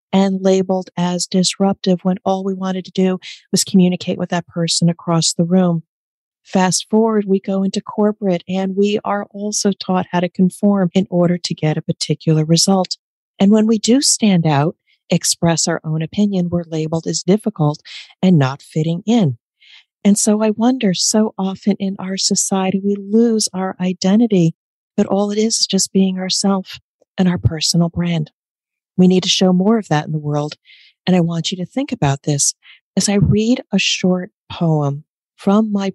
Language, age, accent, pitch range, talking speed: English, 40-59, American, 160-195 Hz, 180 wpm